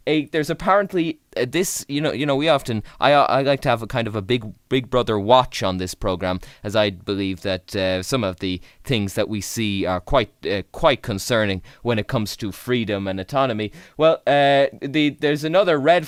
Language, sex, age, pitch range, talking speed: English, male, 20-39, 105-140 Hz, 205 wpm